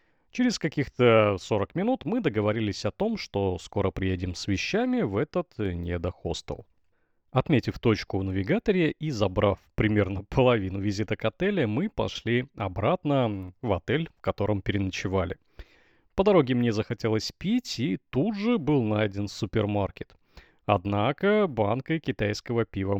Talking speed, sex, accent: 130 wpm, male, native